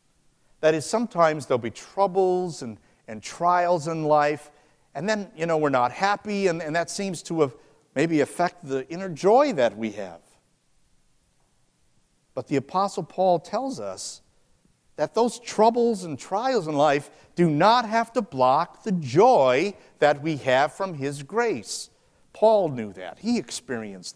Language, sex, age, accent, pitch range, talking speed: English, male, 50-69, American, 130-185 Hz, 155 wpm